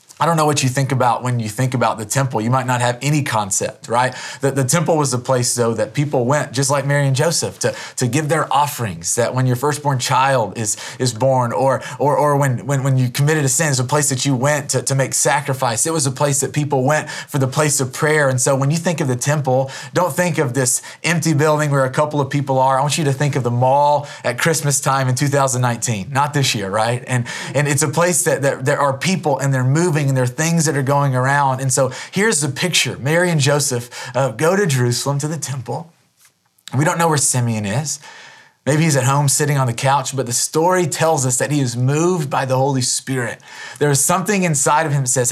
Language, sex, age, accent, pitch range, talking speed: English, male, 30-49, American, 130-155 Hz, 250 wpm